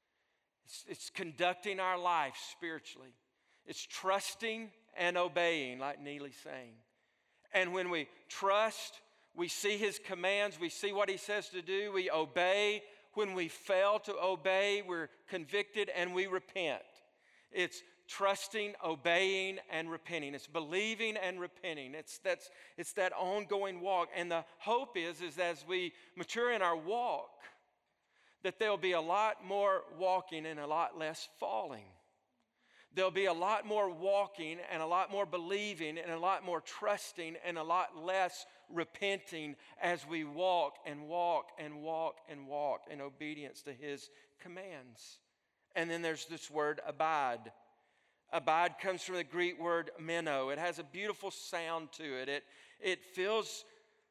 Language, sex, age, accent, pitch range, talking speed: English, male, 50-69, American, 165-195 Hz, 150 wpm